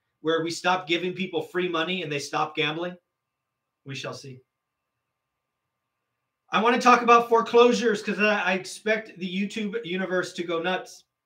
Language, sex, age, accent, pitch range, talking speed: English, male, 30-49, American, 130-195 Hz, 155 wpm